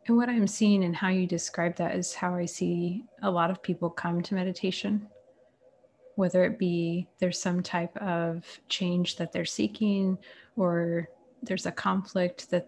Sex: female